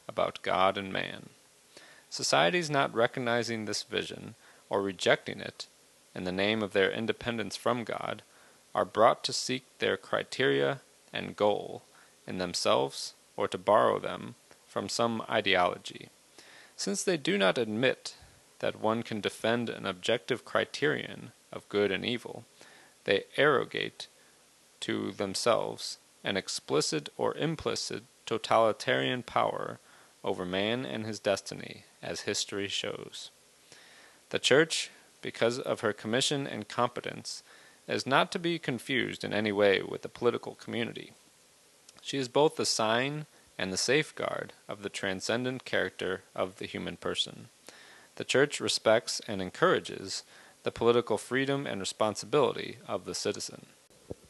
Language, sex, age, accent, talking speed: English, male, 30-49, American, 135 wpm